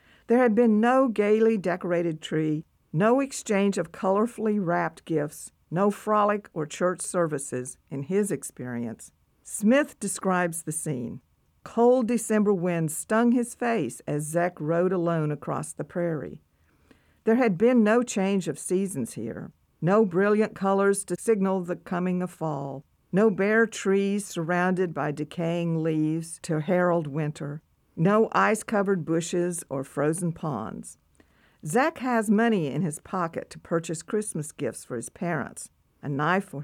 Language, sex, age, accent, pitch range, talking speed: English, female, 50-69, American, 155-210 Hz, 140 wpm